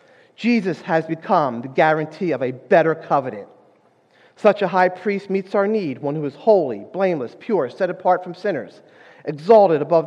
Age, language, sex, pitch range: 40-59, English, male, 160-210 Hz